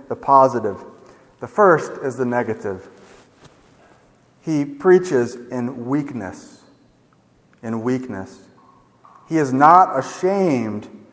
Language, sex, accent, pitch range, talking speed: English, male, American, 125-170 Hz, 90 wpm